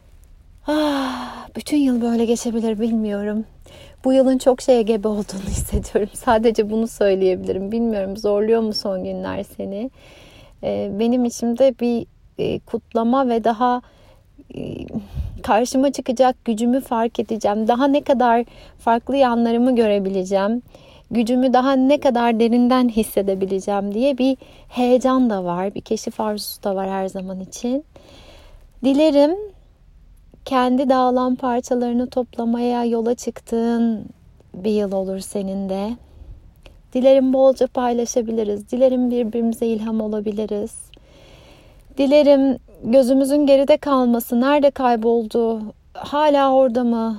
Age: 30-49